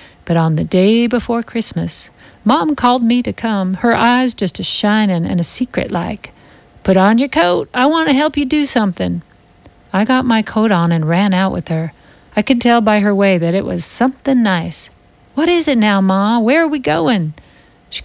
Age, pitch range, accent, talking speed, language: 50-69, 185-240 Hz, American, 195 wpm, English